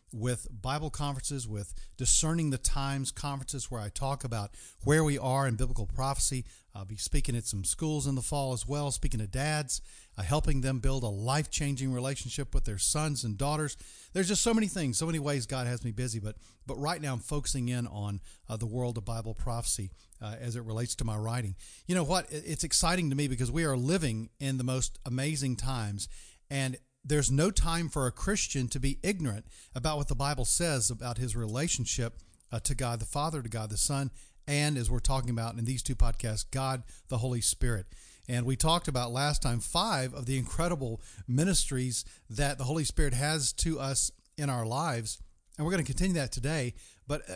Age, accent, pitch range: 40-59, American, 115-145 Hz